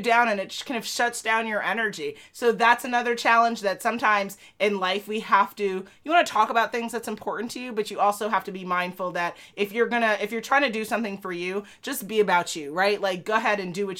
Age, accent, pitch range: 30-49, American, 175-220 Hz